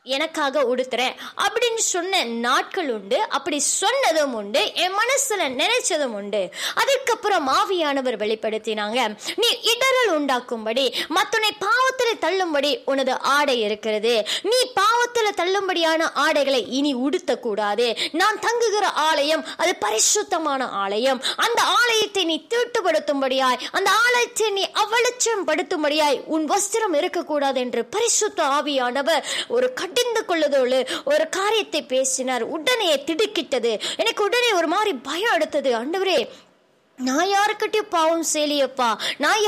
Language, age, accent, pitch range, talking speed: Tamil, 20-39, native, 270-415 Hz, 60 wpm